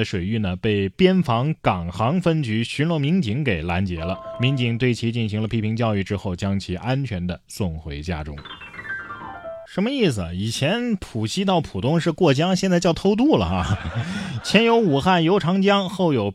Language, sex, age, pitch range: Chinese, male, 20-39, 100-165 Hz